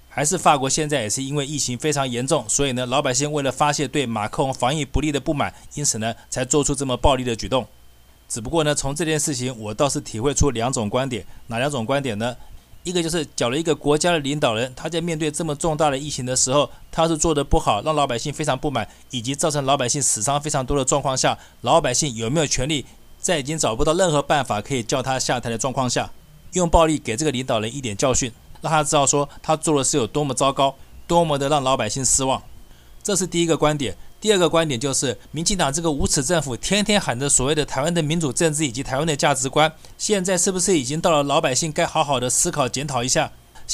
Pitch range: 130-160 Hz